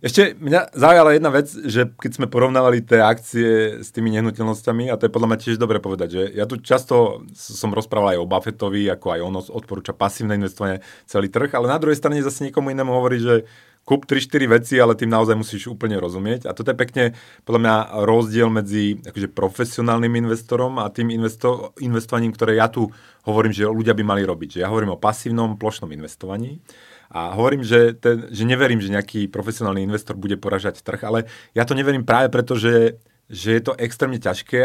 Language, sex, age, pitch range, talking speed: Slovak, male, 30-49, 100-120 Hz, 195 wpm